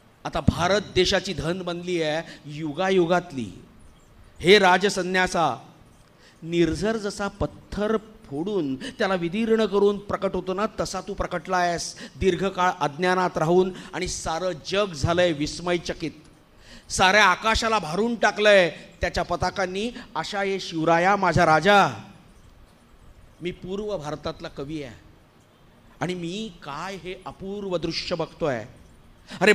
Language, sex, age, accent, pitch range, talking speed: Marathi, male, 50-69, native, 165-195 Hz, 100 wpm